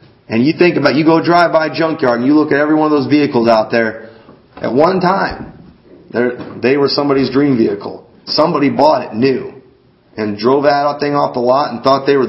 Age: 40-59